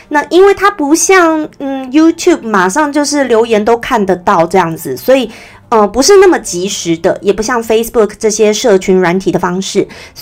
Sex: female